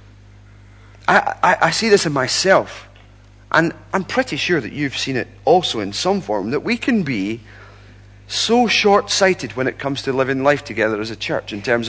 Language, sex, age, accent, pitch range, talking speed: English, male, 40-59, British, 100-145 Hz, 185 wpm